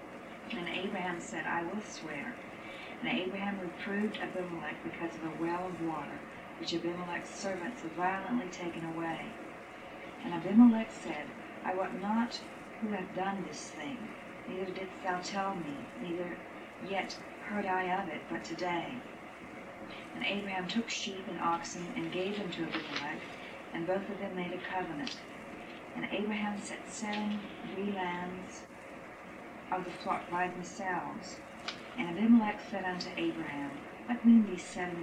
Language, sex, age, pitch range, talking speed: English, female, 50-69, 175-200 Hz, 145 wpm